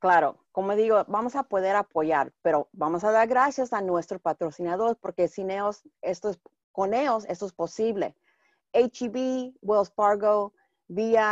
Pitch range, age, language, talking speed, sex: 165-215 Hz, 40-59, English, 135 wpm, female